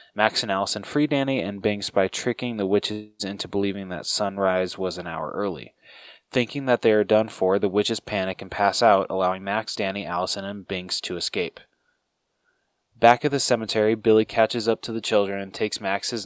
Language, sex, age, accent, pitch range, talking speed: English, male, 20-39, American, 95-115 Hz, 190 wpm